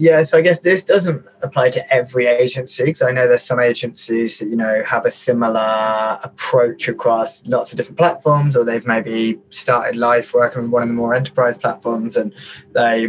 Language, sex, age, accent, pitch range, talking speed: English, male, 20-39, British, 115-130 Hz, 195 wpm